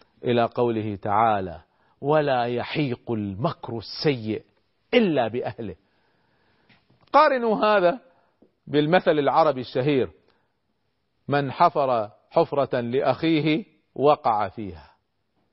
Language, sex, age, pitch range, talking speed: Arabic, male, 40-59, 115-180 Hz, 75 wpm